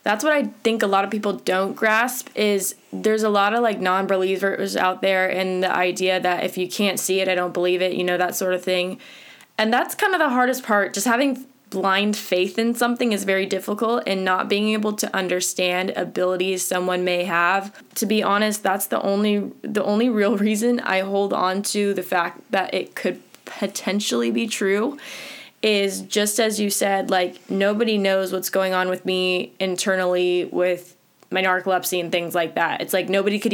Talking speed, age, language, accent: 195 wpm, 20-39, English, American